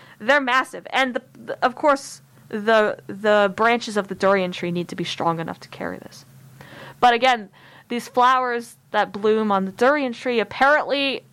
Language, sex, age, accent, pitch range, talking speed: English, female, 20-39, American, 205-270 Hz, 175 wpm